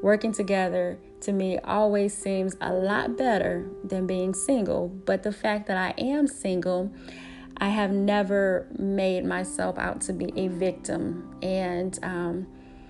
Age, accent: 20-39, American